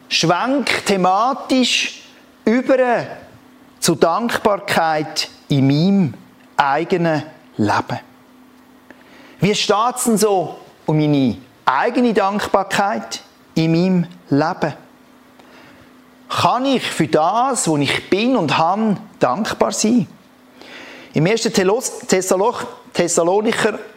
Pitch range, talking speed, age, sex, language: 160-235 Hz, 85 wpm, 50-69, male, German